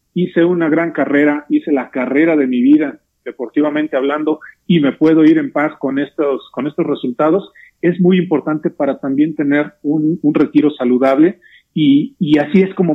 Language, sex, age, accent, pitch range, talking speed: English, male, 40-59, Mexican, 135-170 Hz, 175 wpm